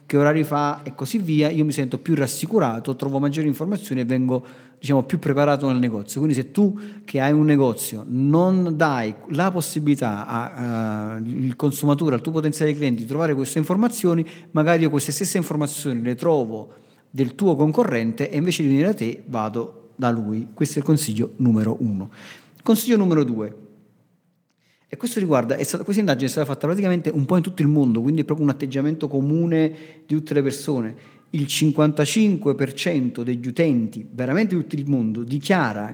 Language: Italian